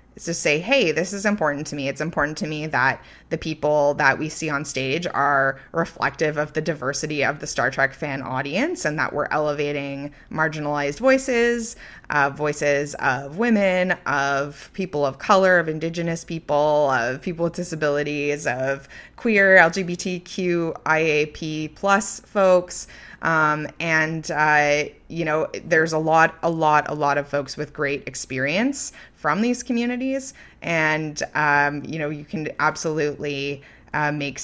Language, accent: English, American